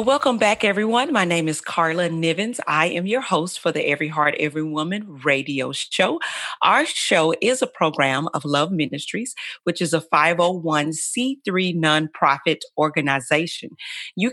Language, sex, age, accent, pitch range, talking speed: English, female, 40-59, American, 160-225 Hz, 145 wpm